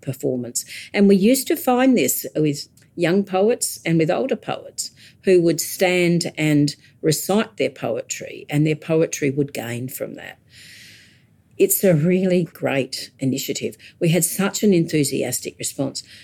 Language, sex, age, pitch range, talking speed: English, female, 50-69, 140-190 Hz, 145 wpm